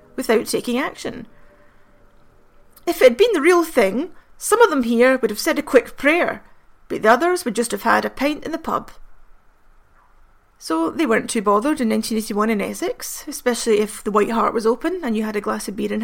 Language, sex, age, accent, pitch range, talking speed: English, female, 30-49, British, 210-255 Hz, 210 wpm